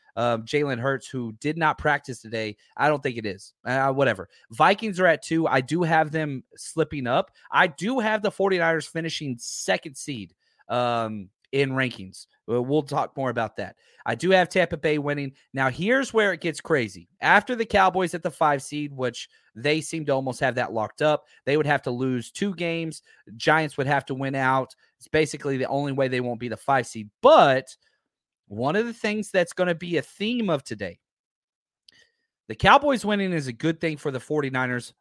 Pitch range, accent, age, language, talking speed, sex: 130-185 Hz, American, 30-49, English, 200 wpm, male